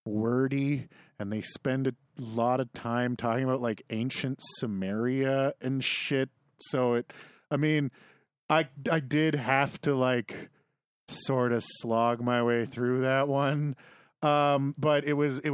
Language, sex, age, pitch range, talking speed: English, male, 30-49, 115-140 Hz, 145 wpm